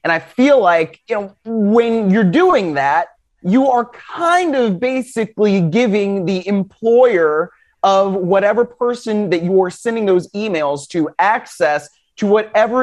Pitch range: 180-230 Hz